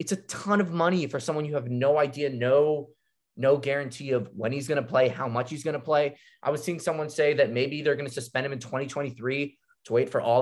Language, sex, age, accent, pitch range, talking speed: English, male, 20-39, American, 125-155 Hz, 255 wpm